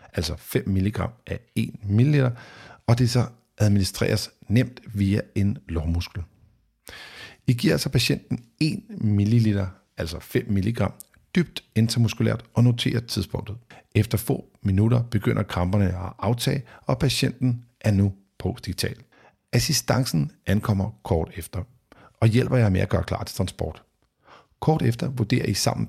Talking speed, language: 135 wpm, Danish